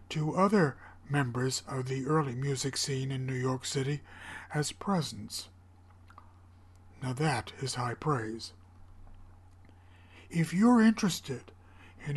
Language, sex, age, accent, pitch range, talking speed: English, male, 60-79, American, 95-145 Hz, 115 wpm